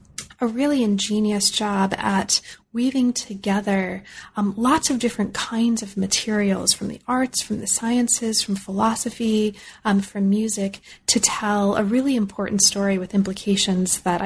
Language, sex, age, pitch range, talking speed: English, female, 30-49, 195-230 Hz, 145 wpm